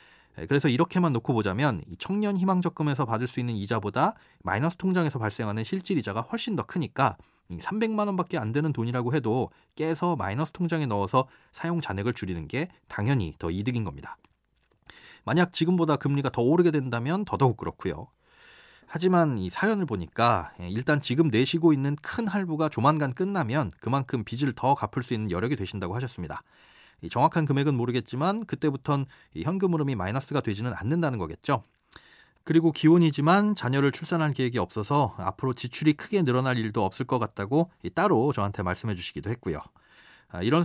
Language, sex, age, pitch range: Korean, male, 30-49, 110-165 Hz